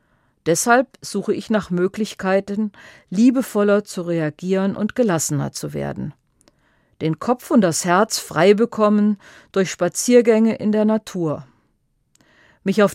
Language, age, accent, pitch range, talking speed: German, 50-69, German, 155-215 Hz, 120 wpm